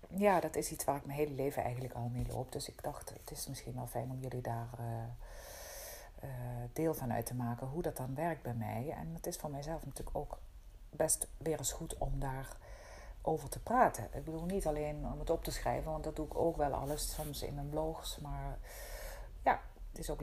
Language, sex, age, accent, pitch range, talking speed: Dutch, female, 40-59, Dutch, 125-155 Hz, 225 wpm